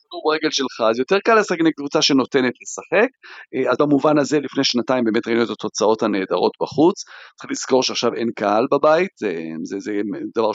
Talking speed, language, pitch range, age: 170 wpm, Hebrew, 120-165 Hz, 40-59